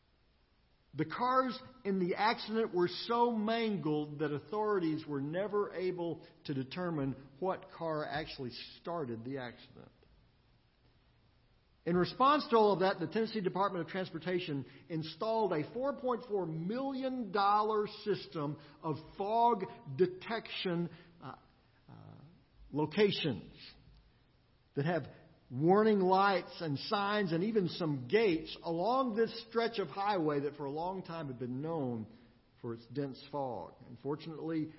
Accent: American